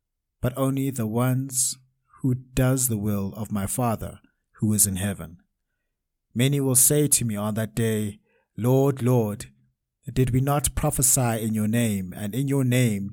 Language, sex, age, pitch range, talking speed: English, male, 60-79, 105-130 Hz, 165 wpm